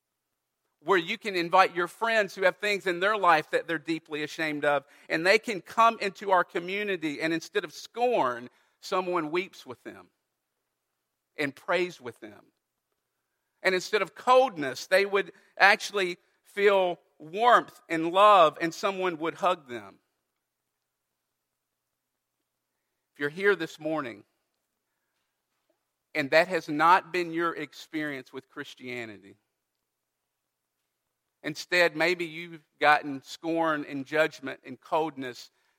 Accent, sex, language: American, male, English